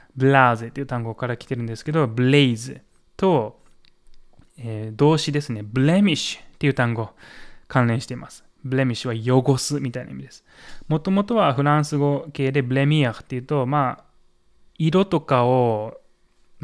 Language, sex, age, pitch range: Japanese, male, 20-39, 120-170 Hz